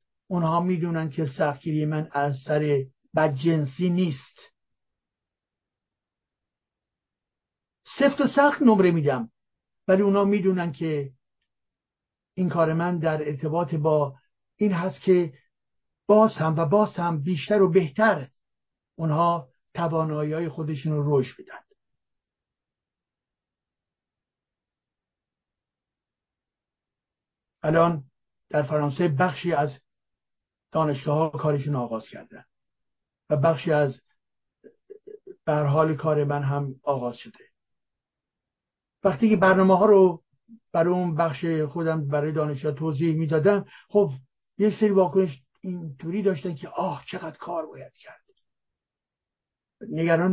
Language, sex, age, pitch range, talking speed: English, male, 60-79, 145-190 Hz, 105 wpm